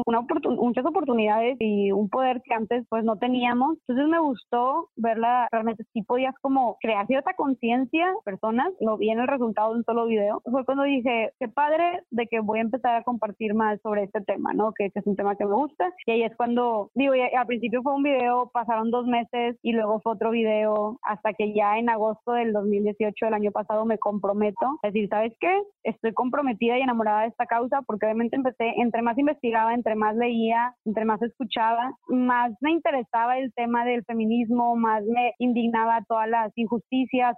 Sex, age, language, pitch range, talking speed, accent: female, 20-39, Spanish, 220-255 Hz, 200 wpm, Mexican